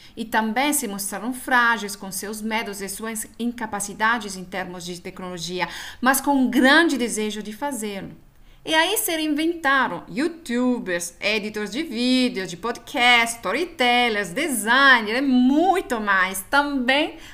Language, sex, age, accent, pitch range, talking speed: Portuguese, female, 30-49, Italian, 185-255 Hz, 130 wpm